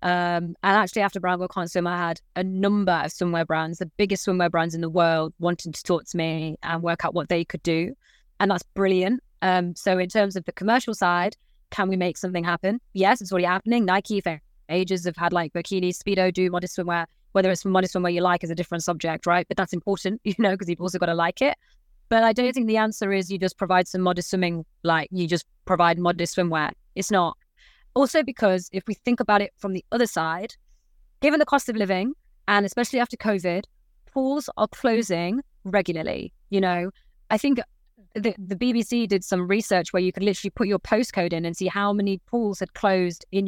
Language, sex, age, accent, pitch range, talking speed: English, female, 20-39, British, 175-210 Hz, 220 wpm